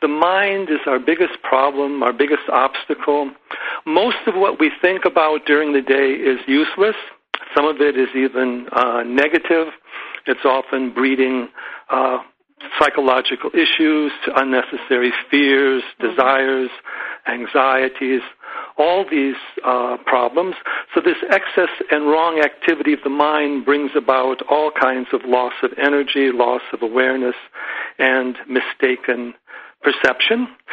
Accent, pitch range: American, 130-155 Hz